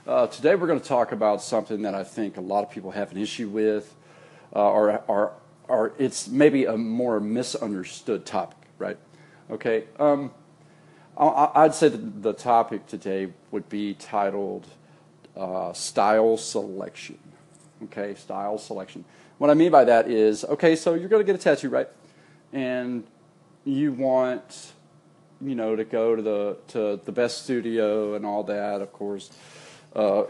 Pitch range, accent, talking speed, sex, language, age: 105-135 Hz, American, 155 wpm, male, English, 40-59